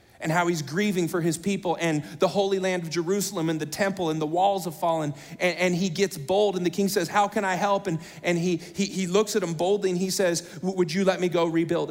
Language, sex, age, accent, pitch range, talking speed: English, male, 30-49, American, 140-180 Hz, 260 wpm